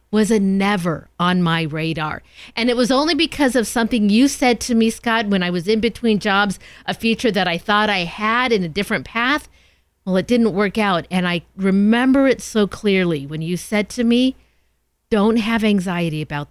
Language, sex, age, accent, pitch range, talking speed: English, female, 50-69, American, 170-225 Hz, 200 wpm